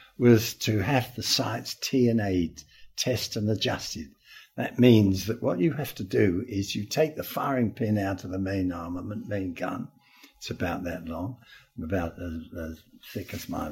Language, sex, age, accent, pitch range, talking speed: English, male, 60-79, British, 95-120 Hz, 190 wpm